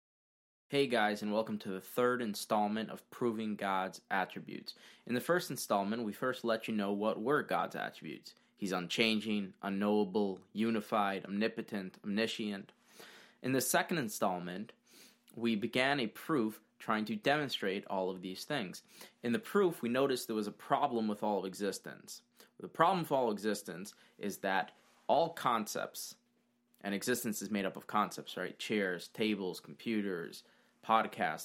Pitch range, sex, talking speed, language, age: 105-120 Hz, male, 155 wpm, English, 20-39